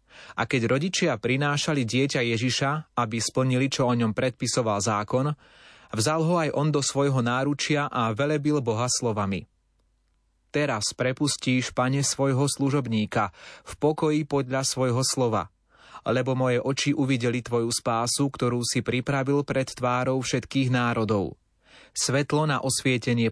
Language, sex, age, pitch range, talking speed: Slovak, male, 30-49, 115-140 Hz, 130 wpm